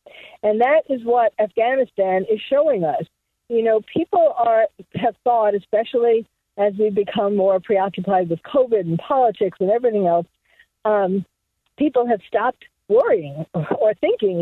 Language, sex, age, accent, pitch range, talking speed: English, female, 50-69, American, 205-250 Hz, 140 wpm